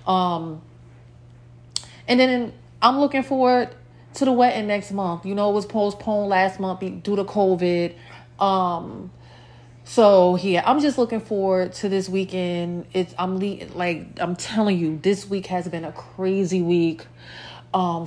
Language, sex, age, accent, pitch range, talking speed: English, female, 30-49, American, 175-220 Hz, 150 wpm